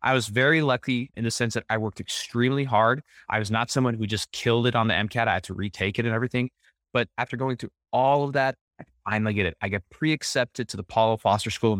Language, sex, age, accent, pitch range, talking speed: English, male, 20-39, American, 110-150 Hz, 255 wpm